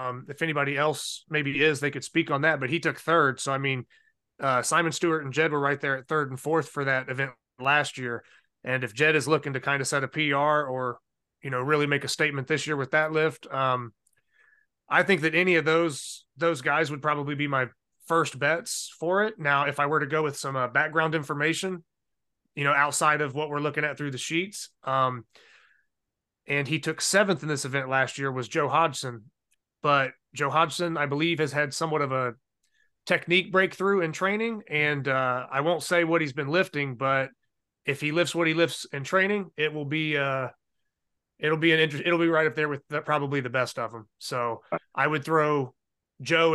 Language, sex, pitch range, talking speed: English, male, 135-165 Hz, 215 wpm